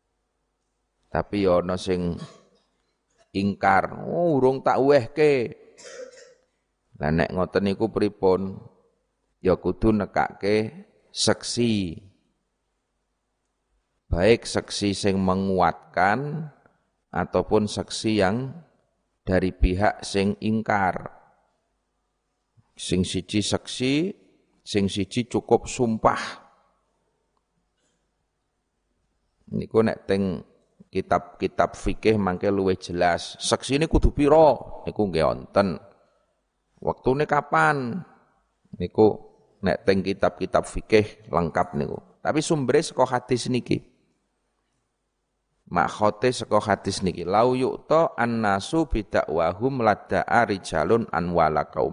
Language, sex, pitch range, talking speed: Indonesian, male, 95-125 Hz, 85 wpm